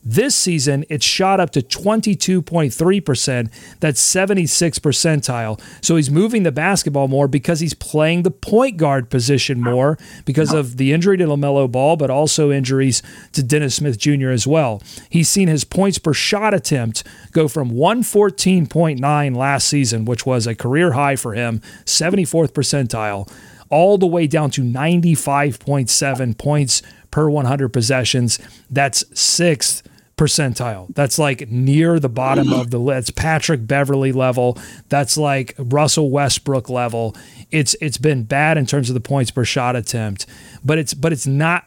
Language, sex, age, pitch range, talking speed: English, male, 40-59, 130-165 Hz, 155 wpm